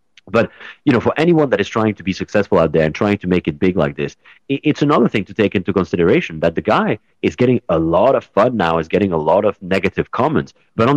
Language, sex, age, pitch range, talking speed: English, male, 30-49, 80-110 Hz, 255 wpm